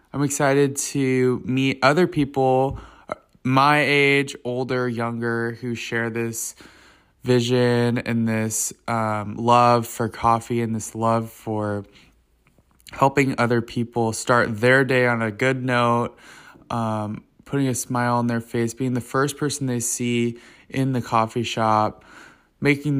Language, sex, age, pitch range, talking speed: English, male, 20-39, 115-130 Hz, 135 wpm